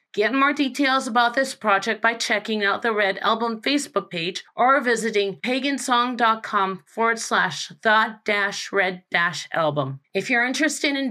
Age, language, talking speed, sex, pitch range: 40-59, English, 150 wpm, female, 195-250 Hz